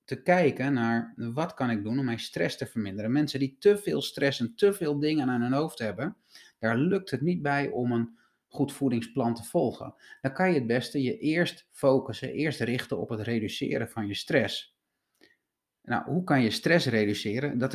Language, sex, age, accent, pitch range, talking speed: Dutch, male, 30-49, Dutch, 115-145 Hz, 200 wpm